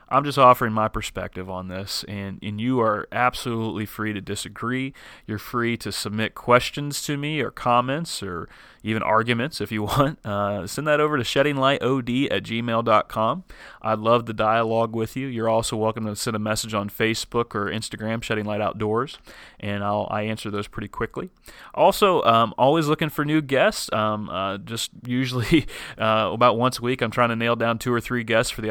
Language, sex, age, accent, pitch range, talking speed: English, male, 30-49, American, 110-125 Hz, 190 wpm